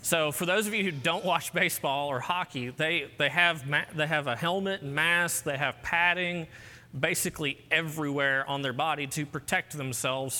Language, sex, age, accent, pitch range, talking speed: English, male, 30-49, American, 120-150 Hz, 185 wpm